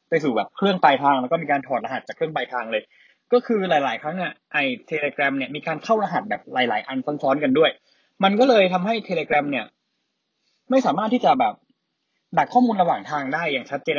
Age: 20-39